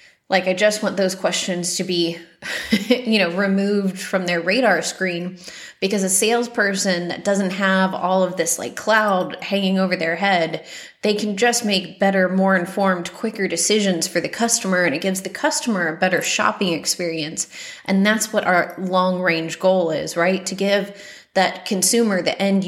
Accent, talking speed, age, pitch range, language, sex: American, 175 wpm, 30-49, 180-205 Hz, English, female